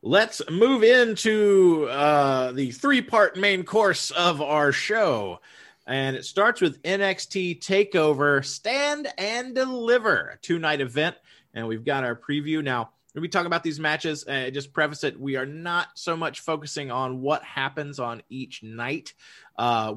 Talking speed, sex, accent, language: 155 wpm, male, American, English